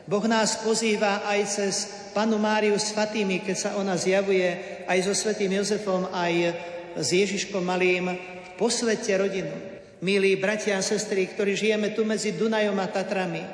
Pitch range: 185-215 Hz